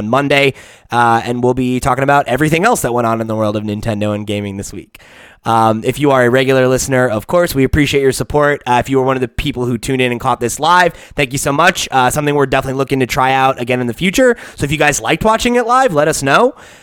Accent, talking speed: American, 270 wpm